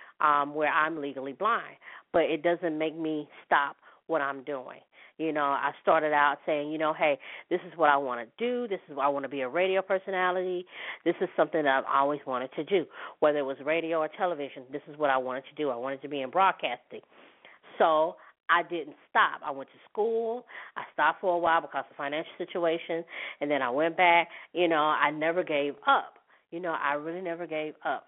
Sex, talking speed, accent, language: female, 220 wpm, American, English